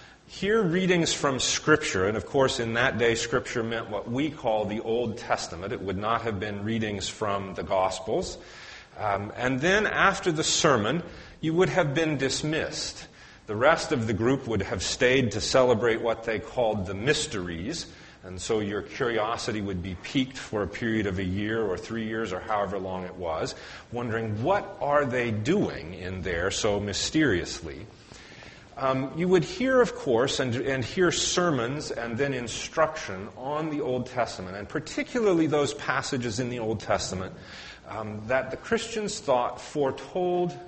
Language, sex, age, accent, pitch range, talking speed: English, male, 40-59, American, 105-145 Hz, 170 wpm